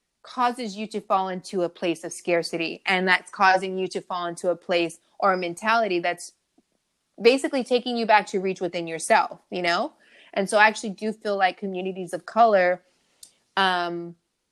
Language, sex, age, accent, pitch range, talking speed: English, female, 20-39, American, 170-195 Hz, 180 wpm